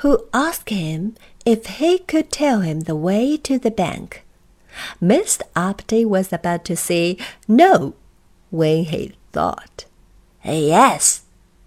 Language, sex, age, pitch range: Chinese, female, 50-69, 170-250 Hz